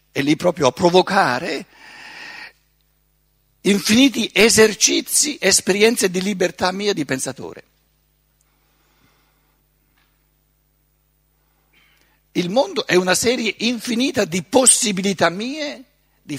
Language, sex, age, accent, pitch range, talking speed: Italian, male, 60-79, native, 145-205 Hz, 85 wpm